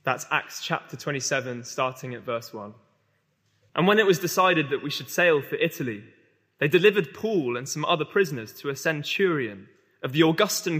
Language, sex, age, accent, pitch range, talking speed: English, male, 20-39, British, 130-165 Hz, 180 wpm